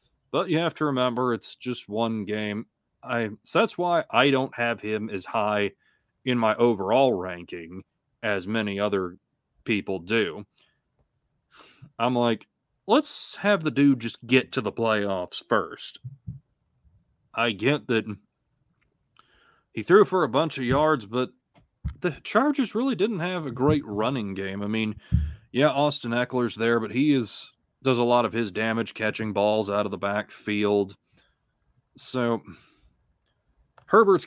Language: English